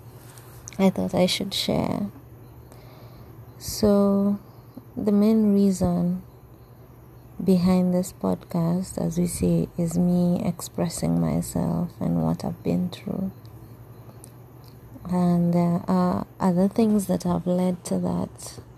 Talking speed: 110 wpm